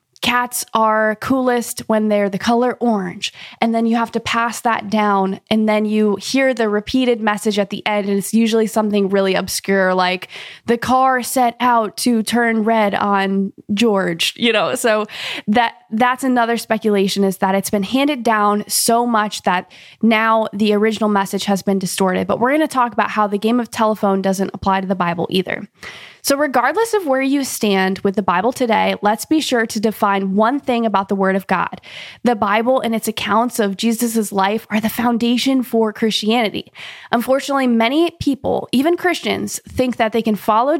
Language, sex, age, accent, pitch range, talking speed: English, female, 20-39, American, 210-250 Hz, 185 wpm